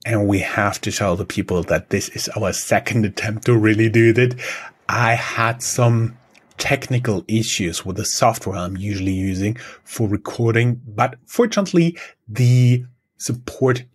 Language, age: English, 30-49